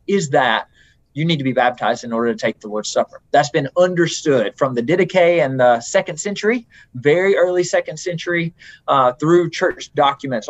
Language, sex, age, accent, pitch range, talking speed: English, male, 30-49, American, 145-180 Hz, 185 wpm